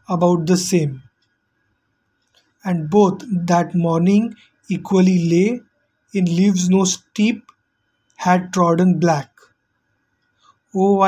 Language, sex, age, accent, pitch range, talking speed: English, male, 20-39, Indian, 170-195 Hz, 90 wpm